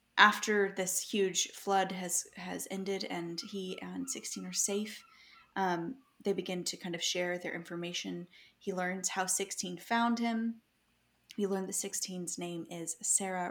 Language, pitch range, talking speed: English, 180-225 Hz, 155 wpm